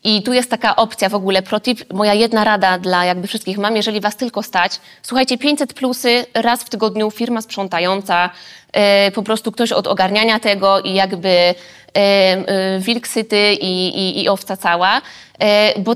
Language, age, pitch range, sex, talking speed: Polish, 20-39, 195-235 Hz, female, 160 wpm